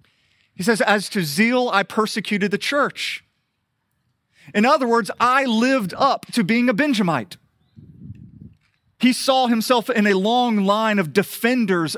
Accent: American